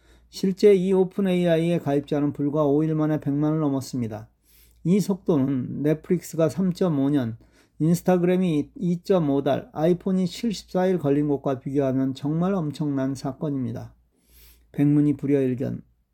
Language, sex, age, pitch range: Korean, male, 40-59, 130-170 Hz